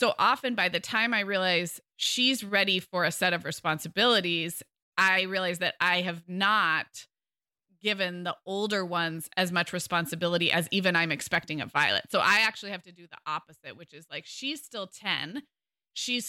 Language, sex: English, female